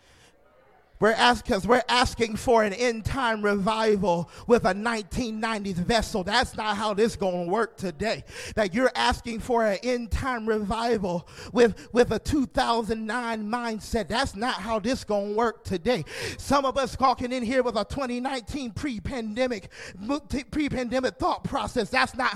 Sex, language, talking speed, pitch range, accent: male, English, 150 wpm, 215-275 Hz, American